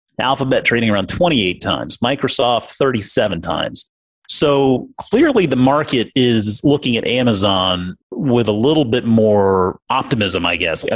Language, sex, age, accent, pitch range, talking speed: English, male, 30-49, American, 100-130 Hz, 135 wpm